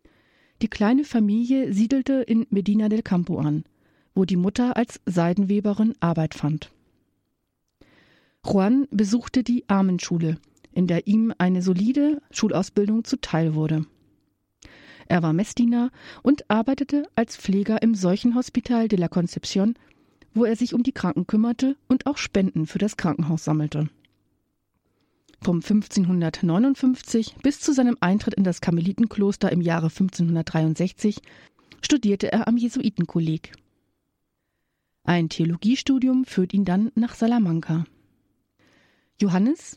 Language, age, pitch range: German, 40-59, 170-235 Hz